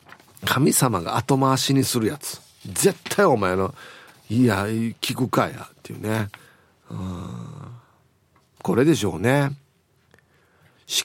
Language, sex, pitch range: Japanese, male, 110-155 Hz